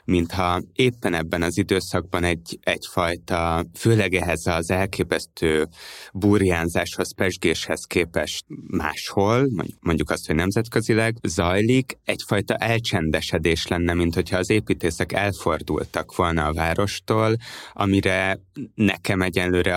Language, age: Hungarian, 20-39